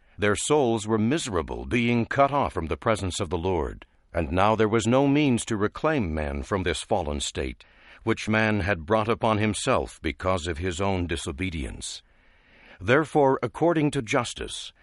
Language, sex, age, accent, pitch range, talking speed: English, male, 60-79, American, 95-130 Hz, 165 wpm